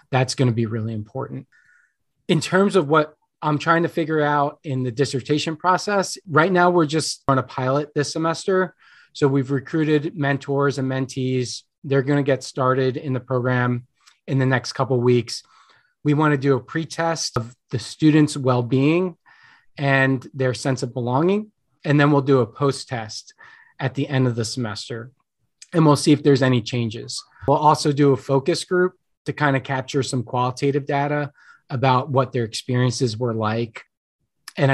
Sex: male